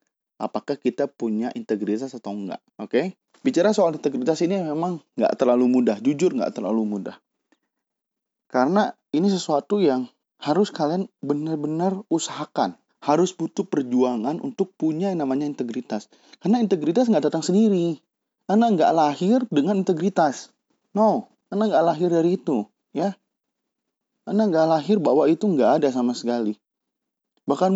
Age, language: 30-49, Indonesian